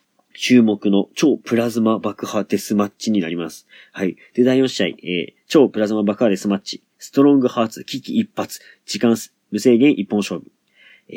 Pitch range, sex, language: 105-135 Hz, male, Japanese